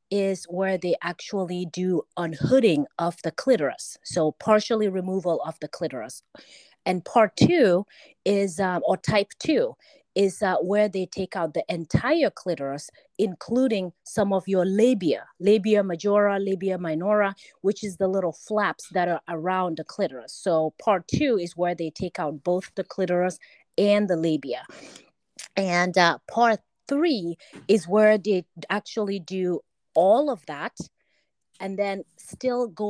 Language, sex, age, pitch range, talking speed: English, female, 30-49, 170-205 Hz, 150 wpm